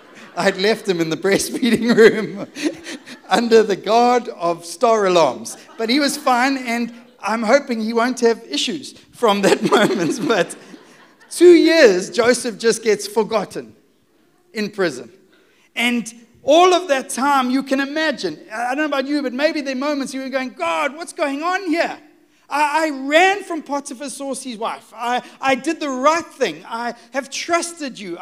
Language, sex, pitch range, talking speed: English, male, 225-300 Hz, 165 wpm